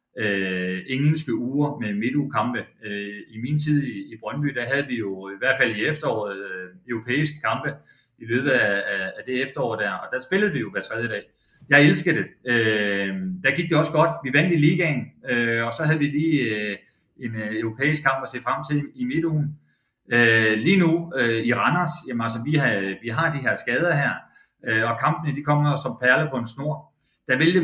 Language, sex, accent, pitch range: Danish, male, native, 110-150 Hz